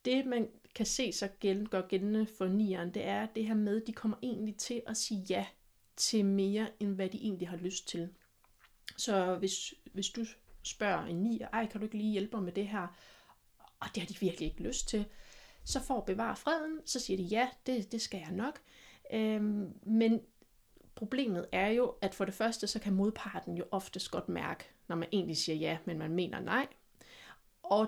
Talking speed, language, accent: 205 wpm, Danish, native